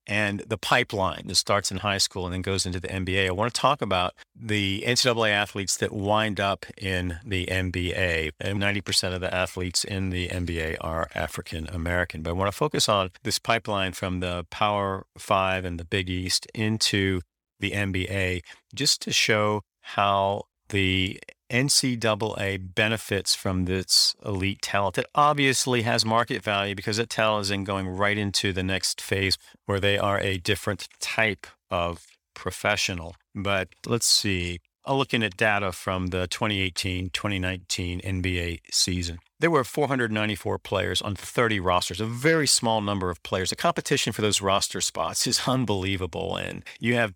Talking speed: 165 wpm